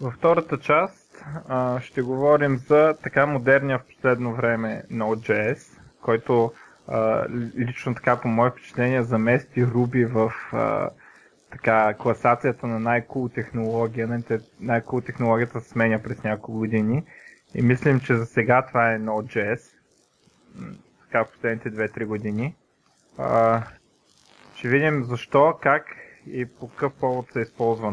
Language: Bulgarian